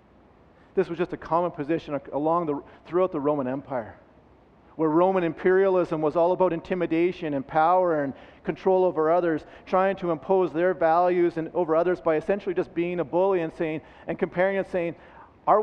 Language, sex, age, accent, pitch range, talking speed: English, male, 40-59, American, 145-175 Hz, 175 wpm